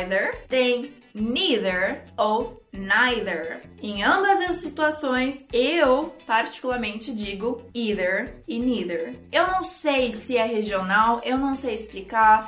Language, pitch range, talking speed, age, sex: Portuguese, 215-285 Hz, 115 wpm, 20-39, female